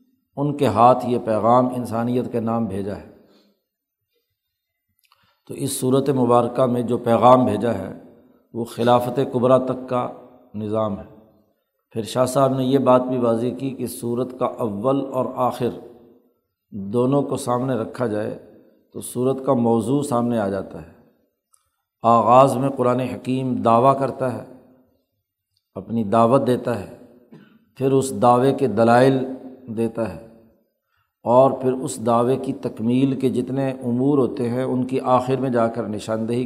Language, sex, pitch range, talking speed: Urdu, male, 115-130 Hz, 145 wpm